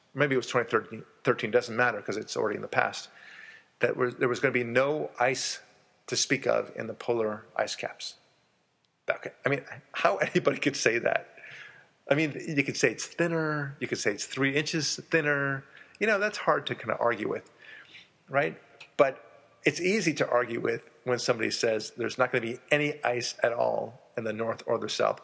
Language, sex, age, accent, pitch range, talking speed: English, male, 40-59, American, 115-140 Hz, 205 wpm